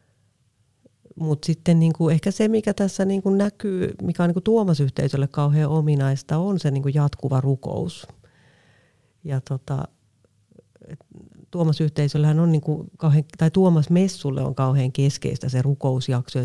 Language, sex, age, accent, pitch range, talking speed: Finnish, female, 40-59, native, 135-160 Hz, 125 wpm